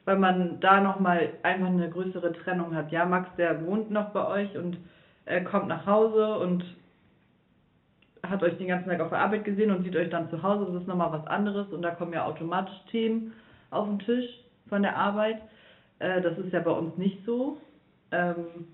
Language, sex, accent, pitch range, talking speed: German, female, German, 170-205 Hz, 200 wpm